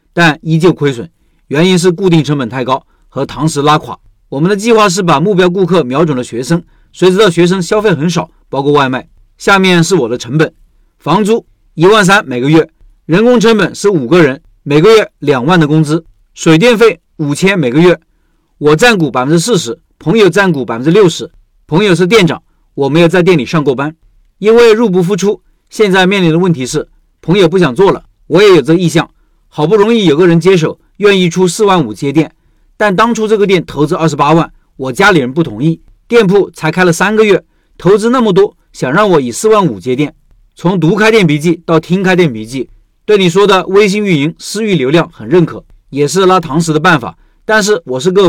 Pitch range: 150-195 Hz